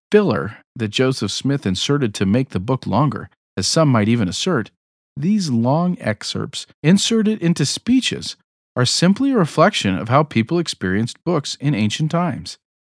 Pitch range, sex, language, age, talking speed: 110-165 Hz, male, English, 40-59, 155 wpm